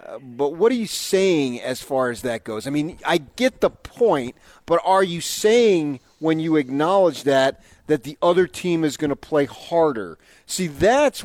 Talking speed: 185 wpm